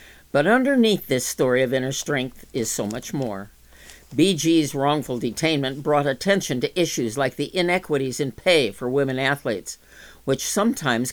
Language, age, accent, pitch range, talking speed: English, 60-79, American, 120-160 Hz, 150 wpm